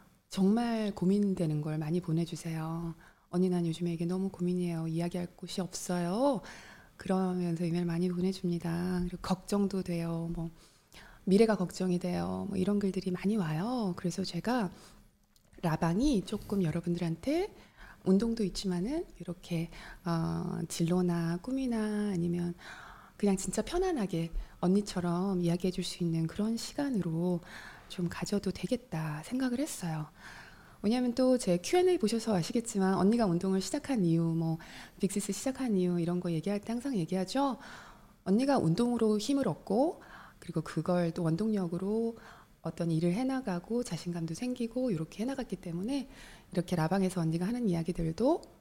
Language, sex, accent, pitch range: Korean, female, native, 170-215 Hz